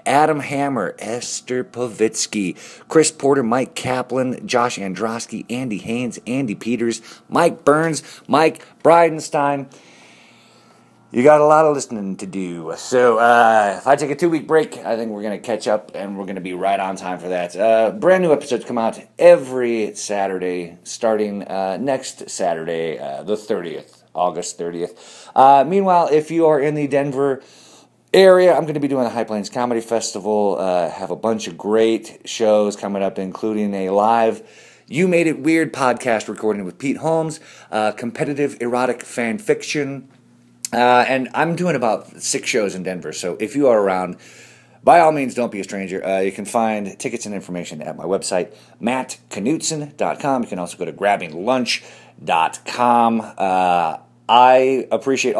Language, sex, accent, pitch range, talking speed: English, male, American, 100-140 Hz, 165 wpm